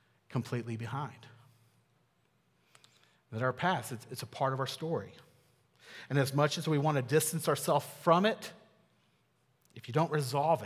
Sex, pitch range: male, 125-165 Hz